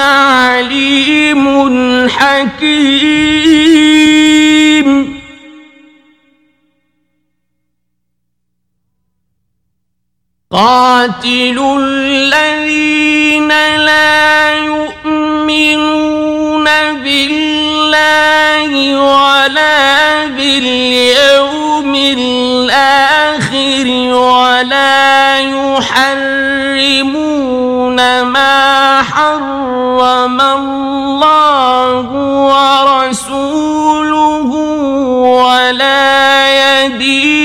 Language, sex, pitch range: Persian, male, 265-305 Hz